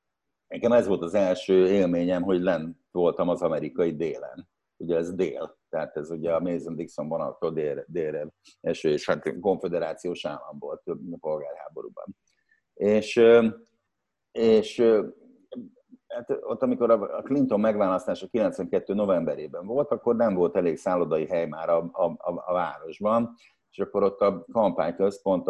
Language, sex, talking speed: Hungarian, male, 140 wpm